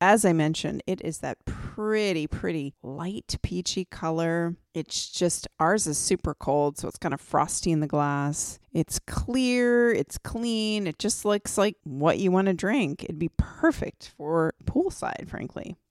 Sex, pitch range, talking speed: female, 155-195 Hz, 165 wpm